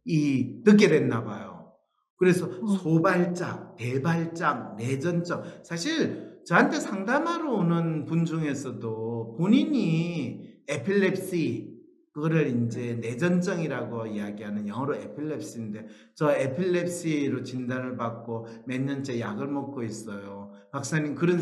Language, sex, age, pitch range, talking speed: English, male, 40-59, 130-210 Hz, 90 wpm